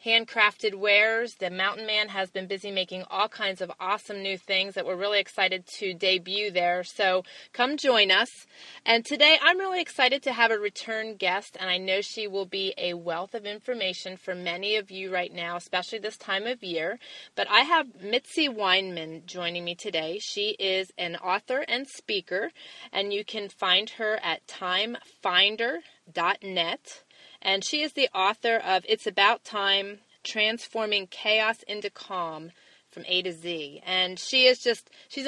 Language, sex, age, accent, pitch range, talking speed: English, female, 30-49, American, 185-230 Hz, 170 wpm